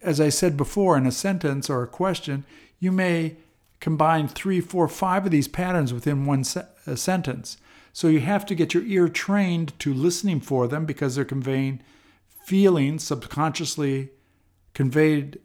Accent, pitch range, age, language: American, 125-160 Hz, 50-69, English